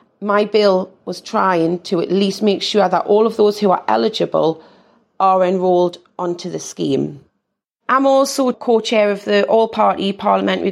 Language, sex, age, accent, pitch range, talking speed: English, female, 30-49, British, 195-225 Hz, 155 wpm